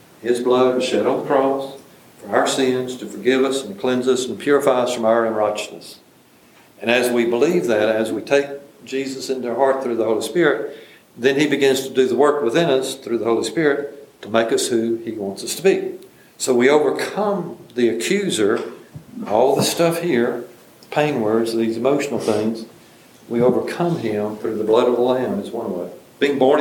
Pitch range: 115-140 Hz